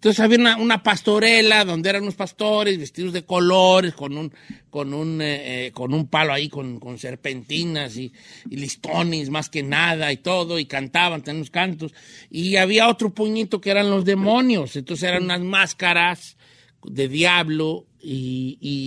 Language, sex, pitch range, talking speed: Spanish, male, 145-200 Hz, 170 wpm